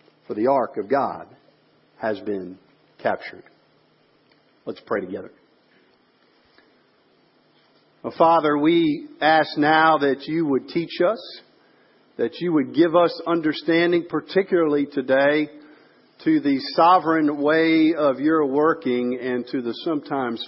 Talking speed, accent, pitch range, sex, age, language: 115 wpm, American, 125-185 Hz, male, 50-69, English